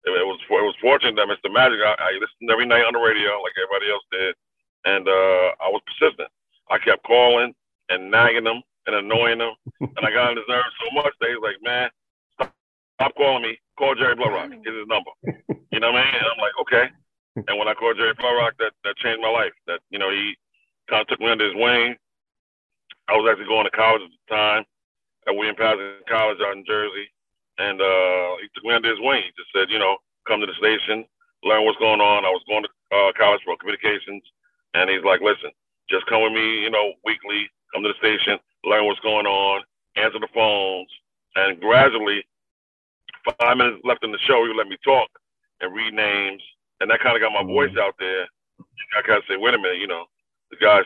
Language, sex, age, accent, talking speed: English, male, 40-59, American, 225 wpm